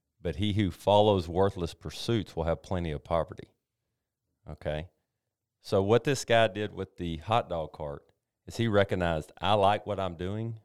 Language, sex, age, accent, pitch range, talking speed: English, male, 40-59, American, 80-110 Hz, 170 wpm